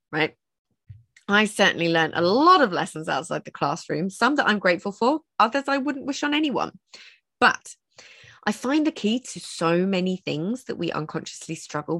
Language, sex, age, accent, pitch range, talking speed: English, female, 20-39, British, 160-235 Hz, 175 wpm